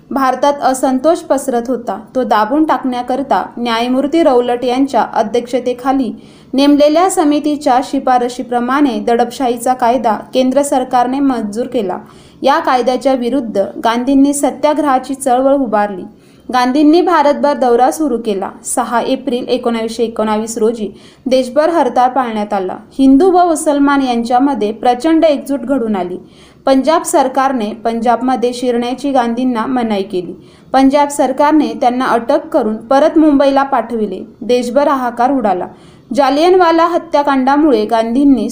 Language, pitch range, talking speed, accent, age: Marathi, 240-280 Hz, 105 wpm, native, 20-39